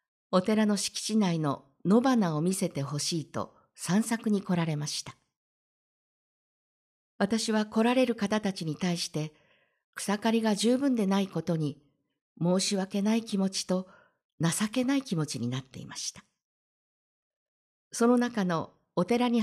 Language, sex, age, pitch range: Japanese, female, 50-69, 165-220 Hz